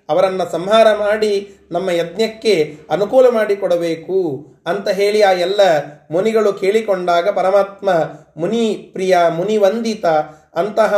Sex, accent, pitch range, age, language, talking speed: male, native, 165-220 Hz, 30-49, Kannada, 100 wpm